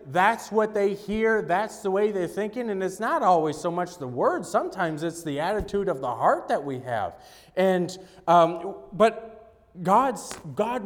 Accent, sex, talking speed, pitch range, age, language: American, male, 175 wpm, 175-250 Hz, 30-49, English